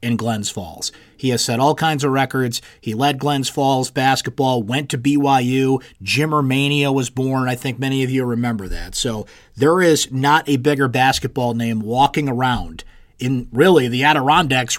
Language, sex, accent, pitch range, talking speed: English, male, American, 120-145 Hz, 175 wpm